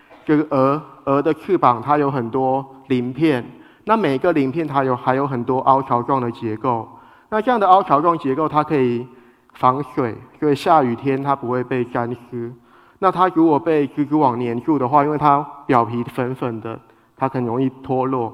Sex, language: male, Chinese